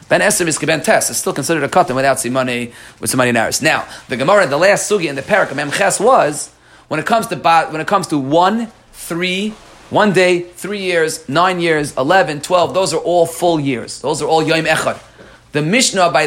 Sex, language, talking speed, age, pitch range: male, English, 205 wpm, 30-49, 135-180 Hz